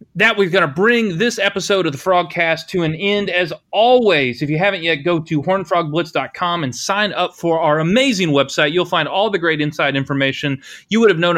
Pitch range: 140-180 Hz